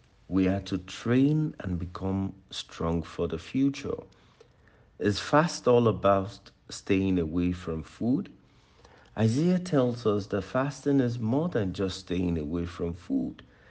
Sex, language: male, English